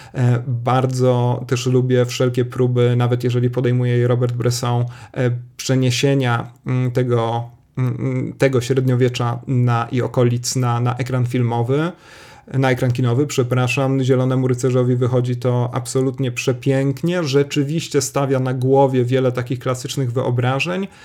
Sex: male